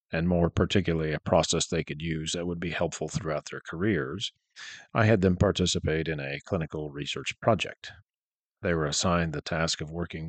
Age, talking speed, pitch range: 40-59, 180 wpm, 80-100 Hz